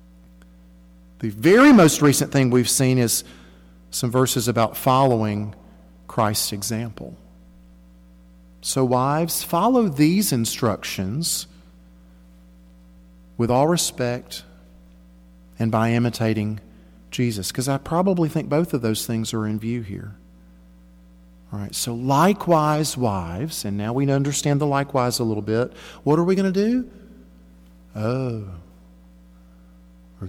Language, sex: English, male